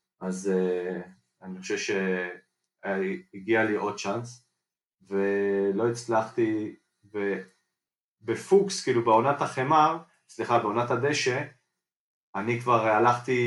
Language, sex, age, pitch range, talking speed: Hebrew, male, 30-49, 100-120 Hz, 90 wpm